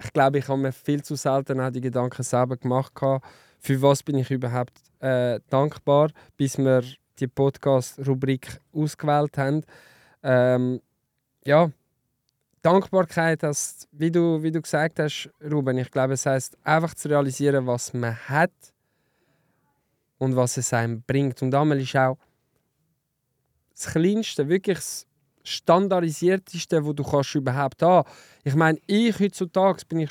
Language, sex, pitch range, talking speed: German, male, 130-160 Hz, 145 wpm